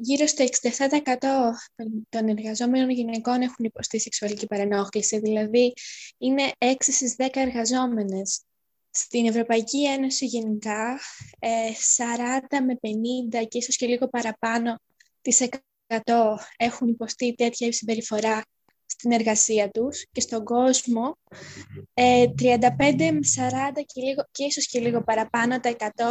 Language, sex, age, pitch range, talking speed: Greek, female, 20-39, 225-265 Hz, 115 wpm